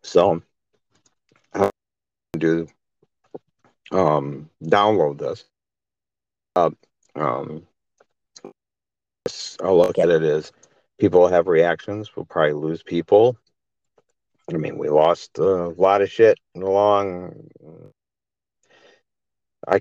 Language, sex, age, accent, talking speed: English, male, 50-69, American, 100 wpm